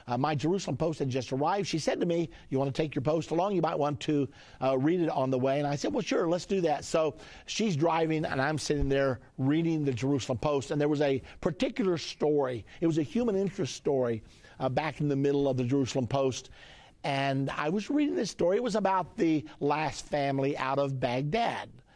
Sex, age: male, 50-69